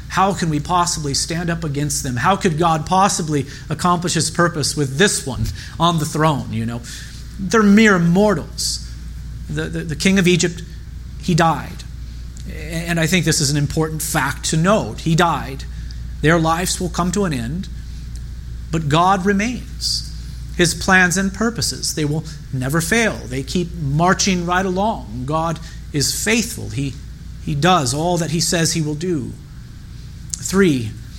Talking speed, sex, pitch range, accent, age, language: 160 wpm, male, 140-180 Hz, American, 40-59, English